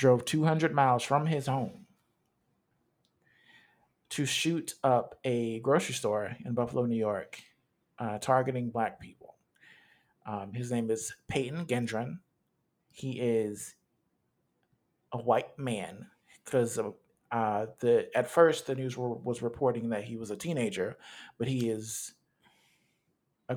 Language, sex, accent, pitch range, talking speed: English, male, American, 115-140 Hz, 130 wpm